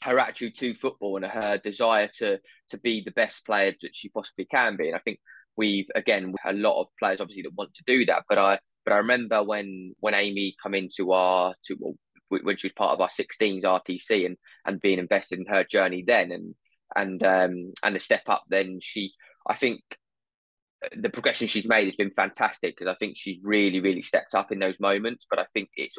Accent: British